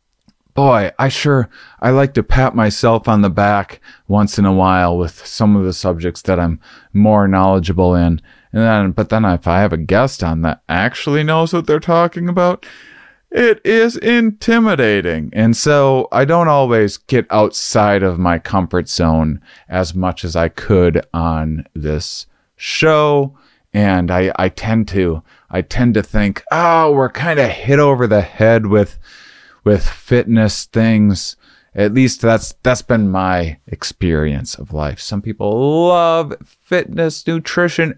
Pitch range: 95-135 Hz